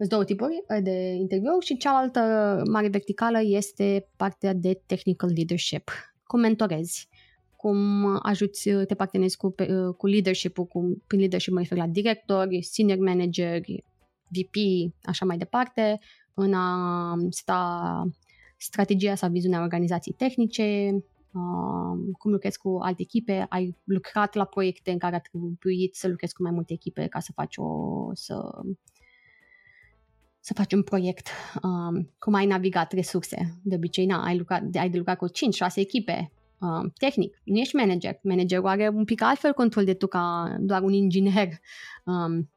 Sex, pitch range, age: female, 180-205 Hz, 20-39